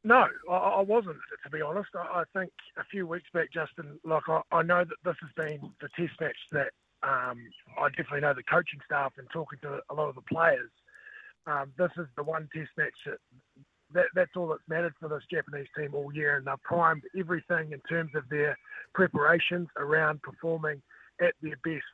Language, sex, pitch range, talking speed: English, male, 145-170 Hz, 195 wpm